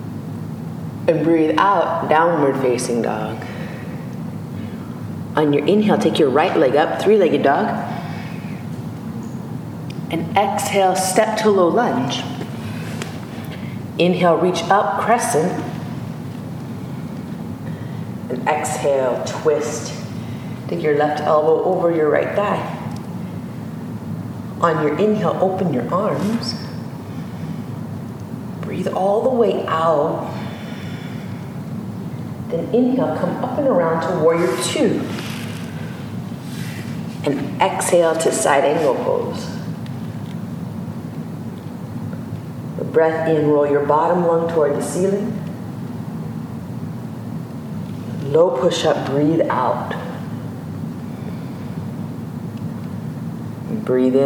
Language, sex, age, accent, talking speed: English, female, 30-49, American, 85 wpm